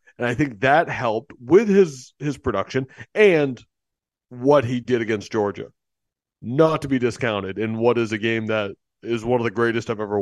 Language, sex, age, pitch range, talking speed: English, male, 30-49, 105-125 Hz, 190 wpm